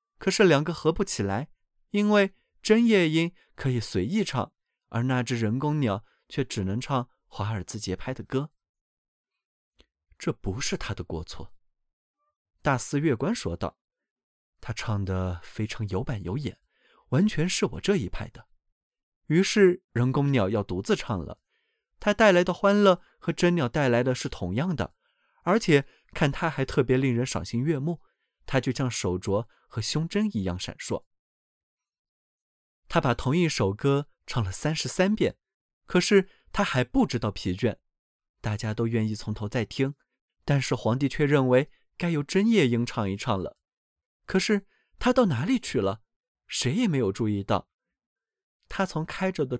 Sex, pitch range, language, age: male, 110-170 Hz, Chinese, 20-39